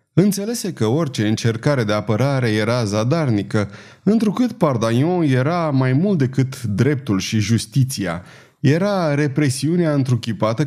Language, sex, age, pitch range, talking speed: Romanian, male, 30-49, 115-165 Hz, 110 wpm